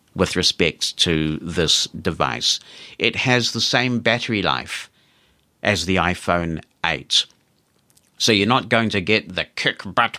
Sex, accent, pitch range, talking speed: male, British, 80-105 Hz, 135 wpm